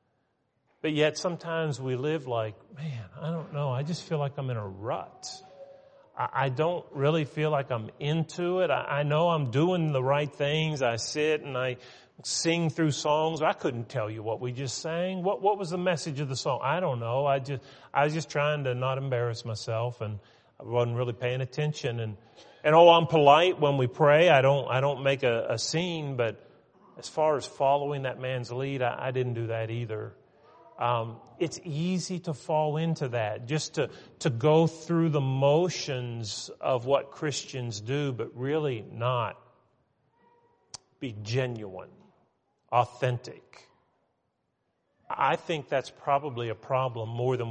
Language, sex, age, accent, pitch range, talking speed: English, male, 40-59, American, 125-160 Hz, 175 wpm